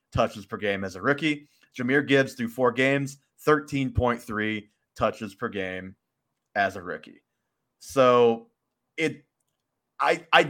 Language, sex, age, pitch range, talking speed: English, male, 30-49, 110-140 Hz, 125 wpm